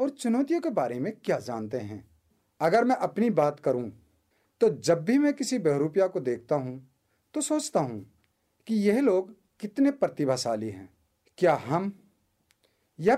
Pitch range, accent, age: 115-195 Hz, Indian, 40-59